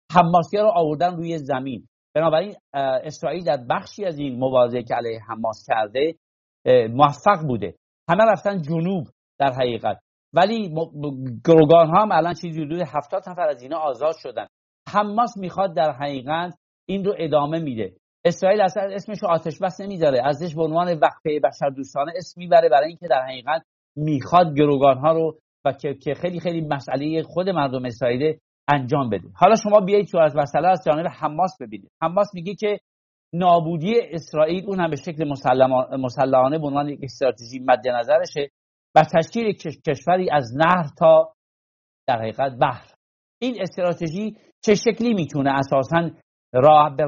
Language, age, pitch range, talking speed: English, 50-69, 145-185 Hz, 155 wpm